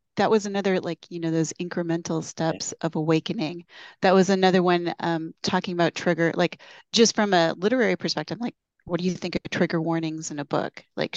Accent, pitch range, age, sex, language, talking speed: American, 165-200 Hz, 30-49, female, English, 200 wpm